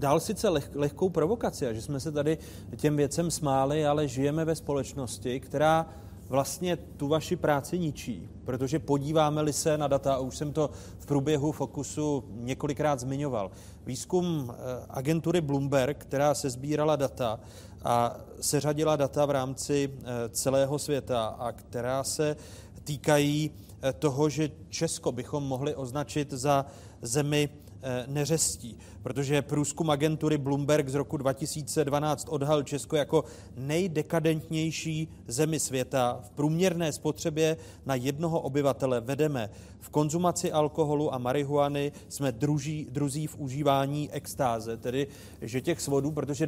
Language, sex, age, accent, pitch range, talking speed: Czech, male, 40-59, native, 125-150 Hz, 125 wpm